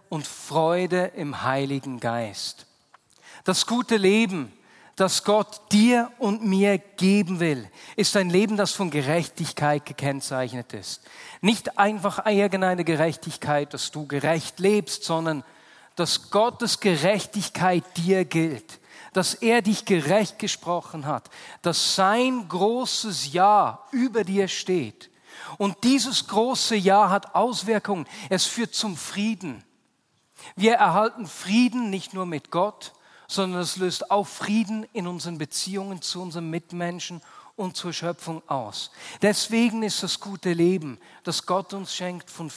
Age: 40-59